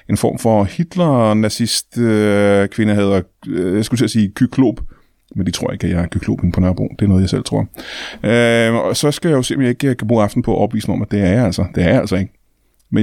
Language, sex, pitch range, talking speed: Danish, male, 105-140 Hz, 255 wpm